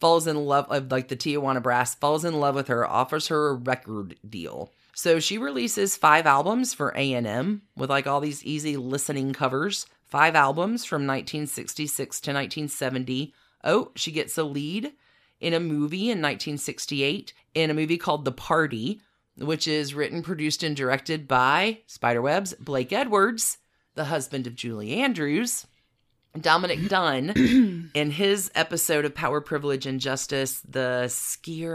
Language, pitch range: English, 135-165 Hz